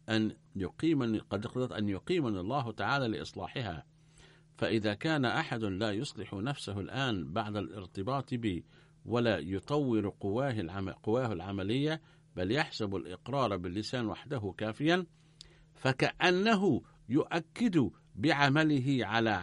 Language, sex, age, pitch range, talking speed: Arabic, male, 50-69, 105-155 Hz, 100 wpm